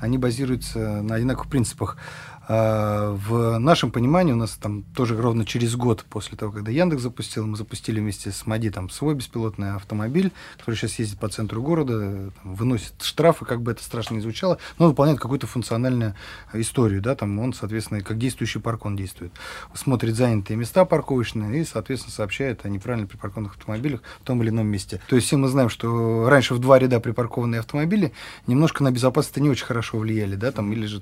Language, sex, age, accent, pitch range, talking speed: Russian, male, 20-39, native, 110-140 Hz, 190 wpm